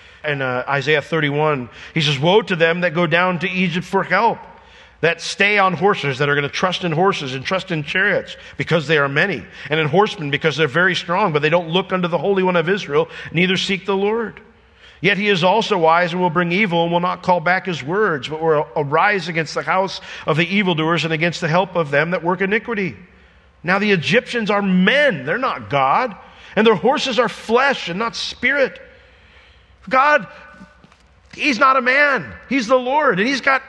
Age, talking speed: 50-69, 210 wpm